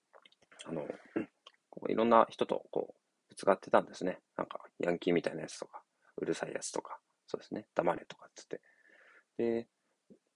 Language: Japanese